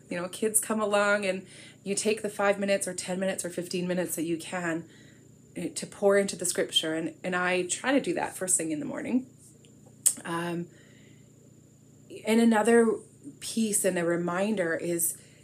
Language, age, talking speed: English, 30-49, 175 wpm